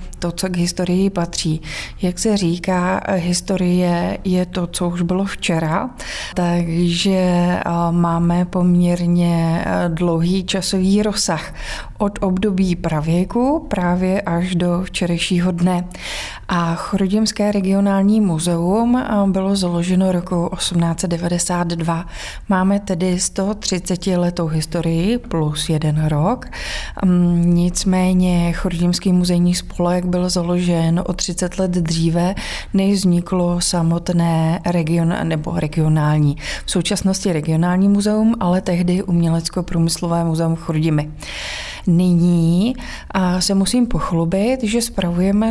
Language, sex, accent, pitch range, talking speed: Czech, female, native, 170-195 Hz, 100 wpm